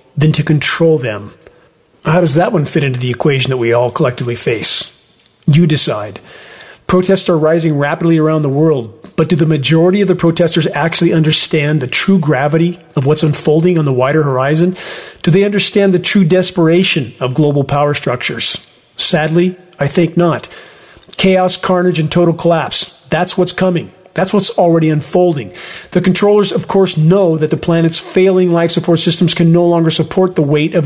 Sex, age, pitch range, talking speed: male, 40-59, 155-180 Hz, 175 wpm